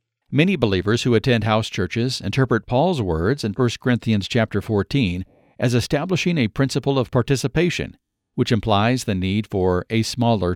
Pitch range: 105-130 Hz